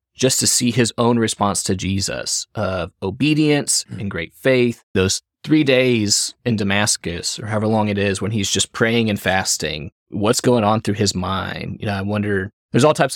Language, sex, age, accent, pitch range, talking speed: English, male, 20-39, American, 100-120 Hz, 195 wpm